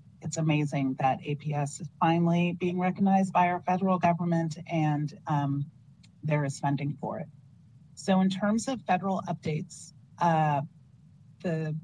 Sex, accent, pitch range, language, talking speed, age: female, American, 150-175 Hz, English, 135 wpm, 30-49